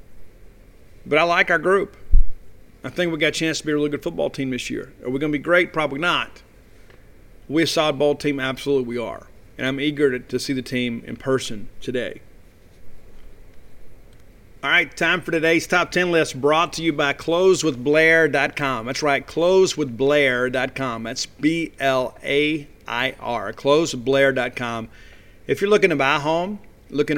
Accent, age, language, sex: American, 50-69, English, male